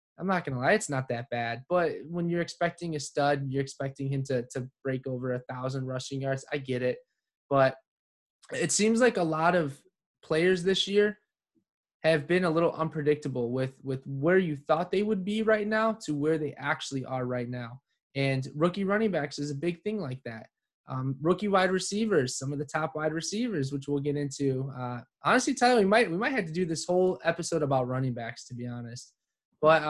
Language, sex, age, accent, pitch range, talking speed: English, male, 20-39, American, 135-175 Hz, 215 wpm